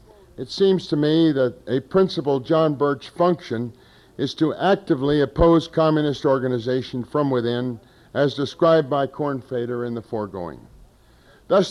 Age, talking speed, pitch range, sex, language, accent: 50-69, 135 wpm, 130-165 Hz, male, English, American